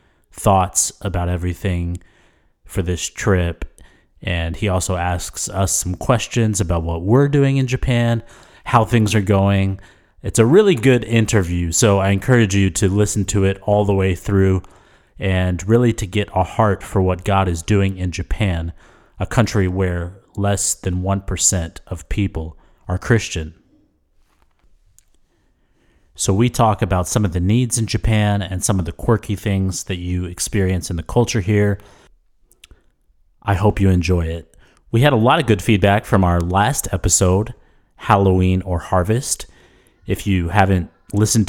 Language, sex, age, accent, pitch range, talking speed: English, male, 30-49, American, 90-110 Hz, 160 wpm